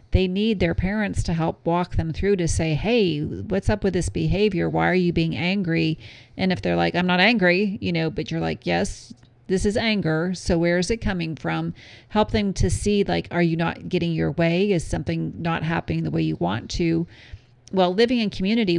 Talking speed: 215 wpm